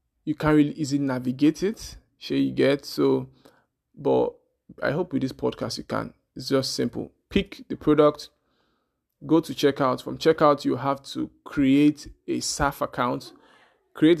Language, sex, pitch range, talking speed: English, male, 130-150 Hz, 155 wpm